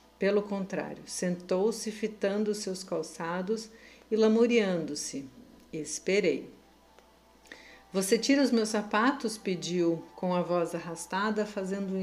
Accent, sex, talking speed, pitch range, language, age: Brazilian, female, 110 wpm, 180-230 Hz, Portuguese, 50-69